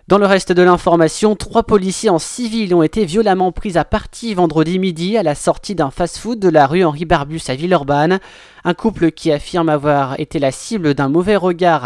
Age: 20-39